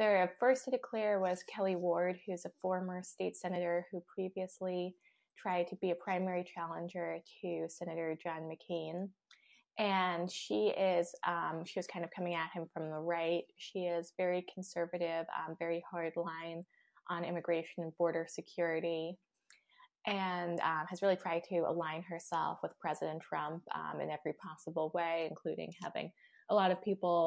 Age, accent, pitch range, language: 20-39, American, 170-190 Hz, English